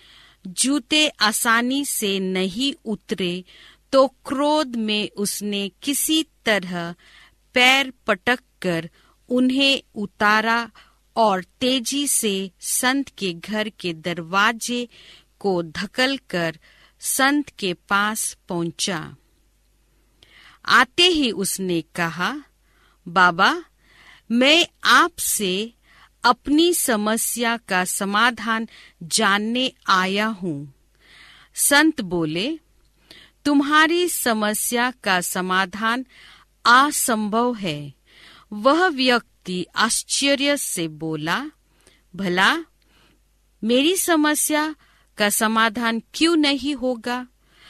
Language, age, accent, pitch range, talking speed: Hindi, 50-69, native, 190-275 Hz, 80 wpm